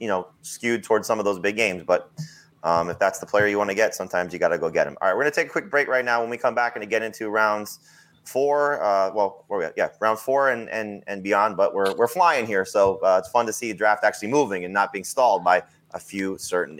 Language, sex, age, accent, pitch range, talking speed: English, male, 30-49, American, 105-140 Hz, 290 wpm